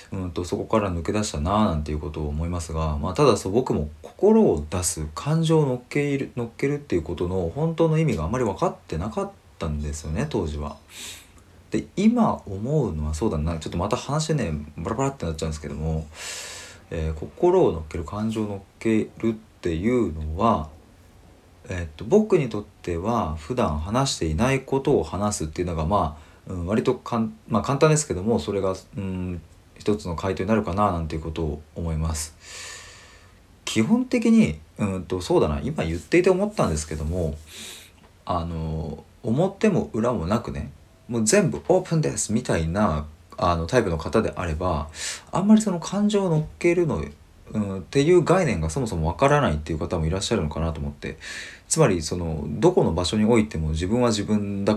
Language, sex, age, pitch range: Japanese, male, 40-59, 80-115 Hz